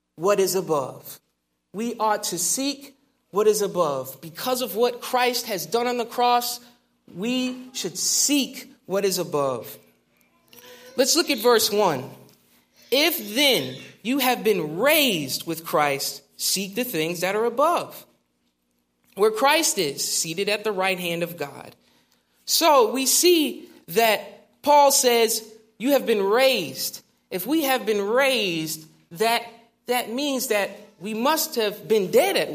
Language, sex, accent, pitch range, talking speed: English, male, American, 200-265 Hz, 145 wpm